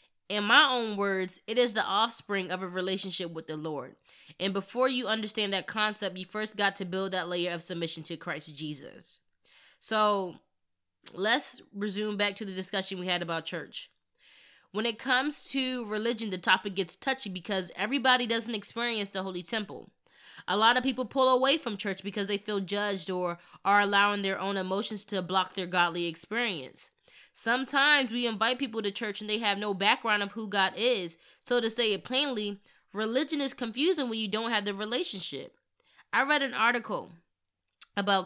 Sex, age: female, 20-39